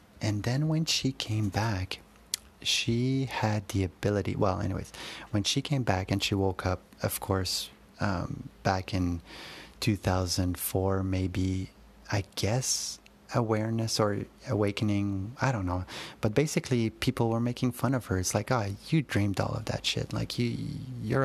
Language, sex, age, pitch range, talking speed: English, male, 30-49, 95-115 Hz, 155 wpm